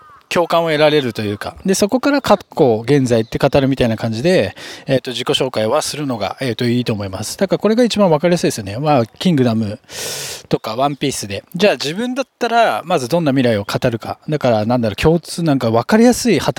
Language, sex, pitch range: Japanese, male, 125-175 Hz